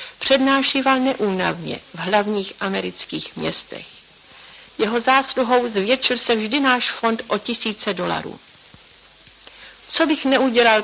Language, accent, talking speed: Czech, native, 105 wpm